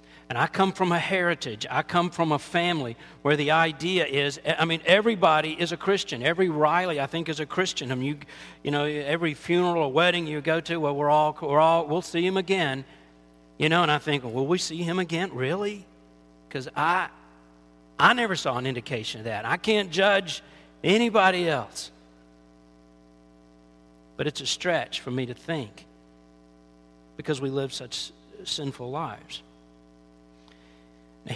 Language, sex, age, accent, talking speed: English, male, 50-69, American, 170 wpm